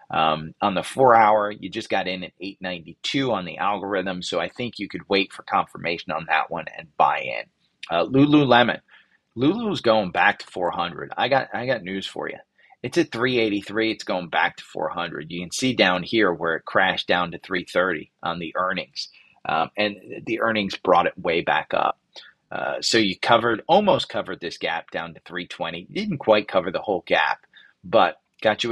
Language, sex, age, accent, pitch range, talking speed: English, male, 30-49, American, 100-130 Hz, 195 wpm